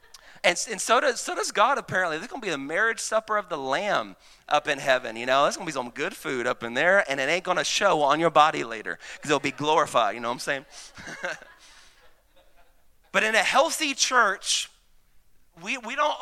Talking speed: 210 wpm